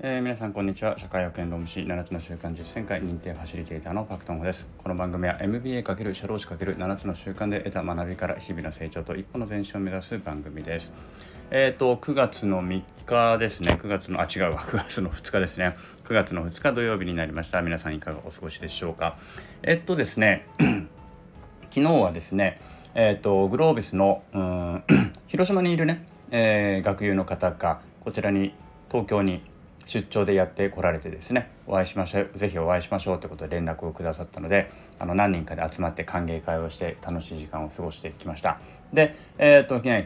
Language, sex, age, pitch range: Japanese, male, 20-39, 85-115 Hz